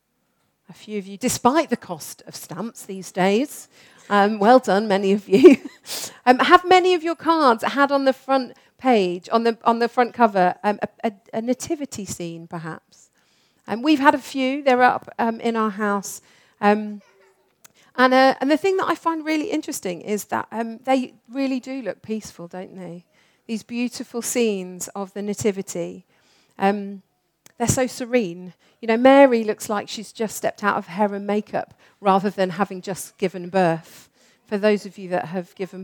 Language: English